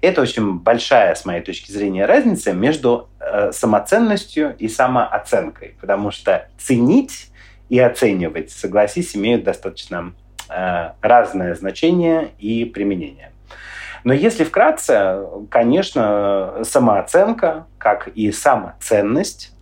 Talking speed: 100 wpm